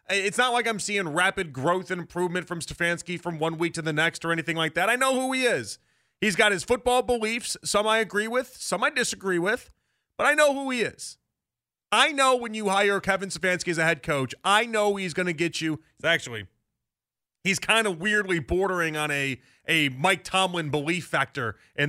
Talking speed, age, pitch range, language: 210 wpm, 30-49, 160-220 Hz, English